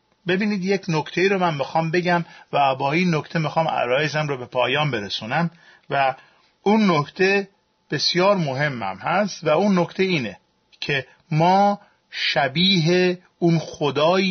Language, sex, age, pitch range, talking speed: Persian, male, 40-59, 145-180 Hz, 130 wpm